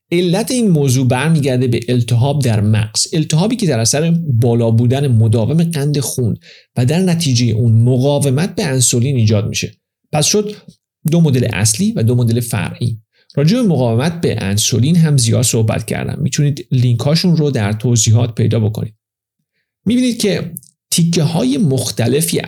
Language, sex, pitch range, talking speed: Persian, male, 120-165 Hz, 150 wpm